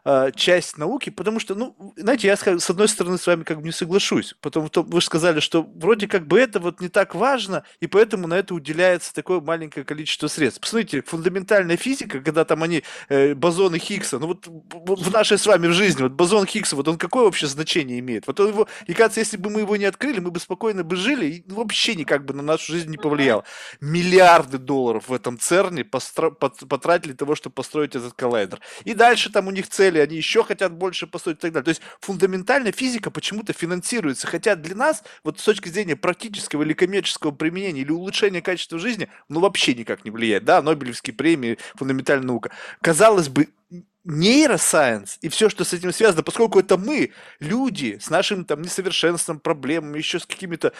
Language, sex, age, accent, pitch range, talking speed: Russian, male, 20-39, native, 155-200 Hz, 200 wpm